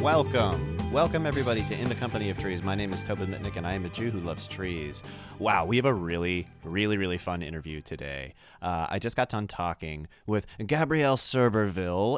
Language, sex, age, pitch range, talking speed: English, male, 30-49, 80-105 Hz, 200 wpm